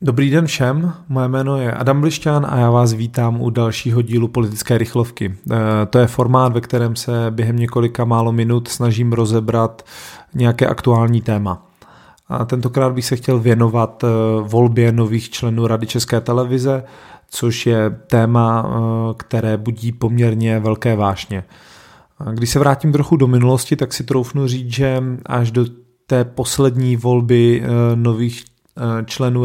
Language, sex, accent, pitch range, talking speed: Czech, male, native, 115-125 Hz, 140 wpm